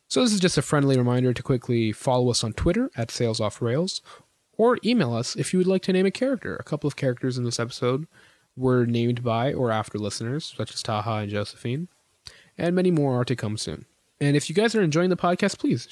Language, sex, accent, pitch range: English, male, American, 120-170 Hz